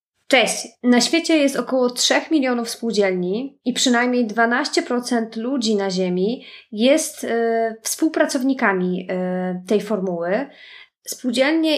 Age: 20-39